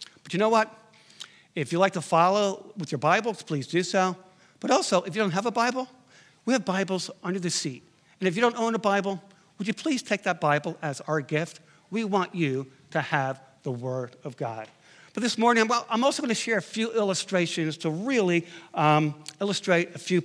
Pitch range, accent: 165-220 Hz, American